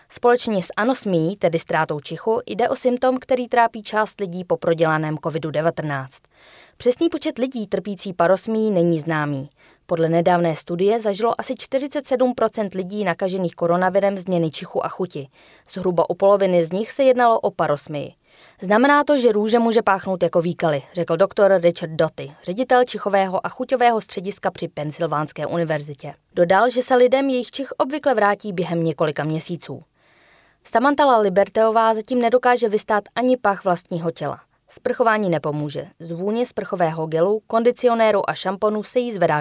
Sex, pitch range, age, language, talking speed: female, 165-230 Hz, 20-39, Czech, 145 wpm